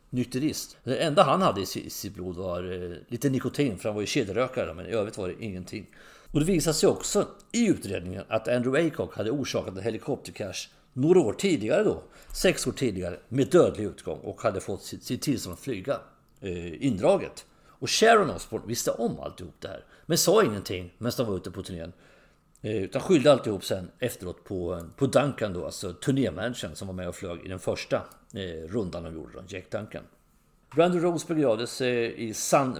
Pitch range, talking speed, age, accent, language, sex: 95-125 Hz, 185 wpm, 50-69, Swedish, English, male